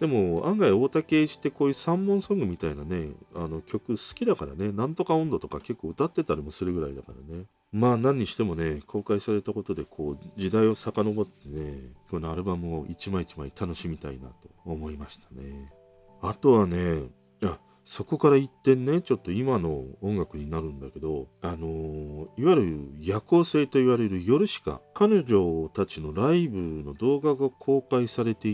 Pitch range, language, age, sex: 80-130 Hz, Japanese, 40-59, male